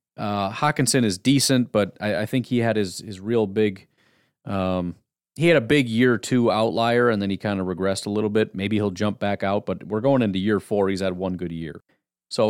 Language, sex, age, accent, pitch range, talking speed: English, male, 30-49, American, 100-130 Hz, 230 wpm